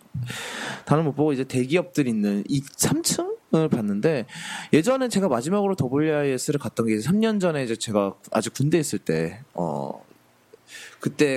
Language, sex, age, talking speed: English, male, 20-39, 125 wpm